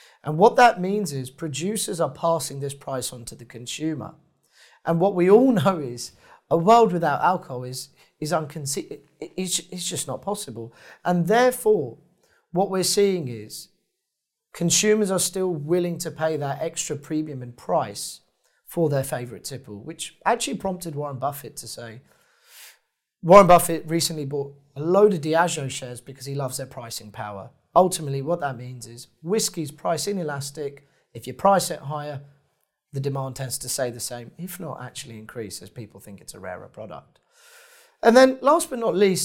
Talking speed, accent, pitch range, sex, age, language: 170 wpm, British, 140-185 Hz, male, 30-49, English